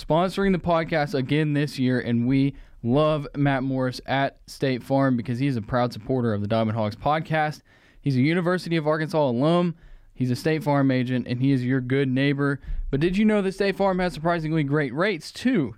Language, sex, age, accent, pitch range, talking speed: English, male, 10-29, American, 115-150 Hz, 200 wpm